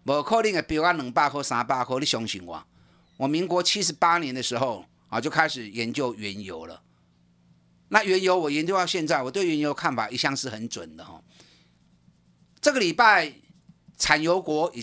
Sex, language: male, Chinese